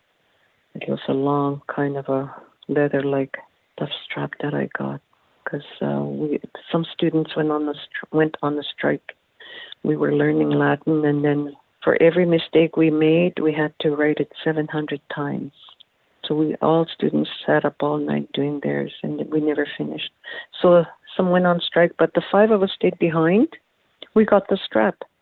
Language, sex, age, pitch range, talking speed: English, female, 50-69, 145-185 Hz, 175 wpm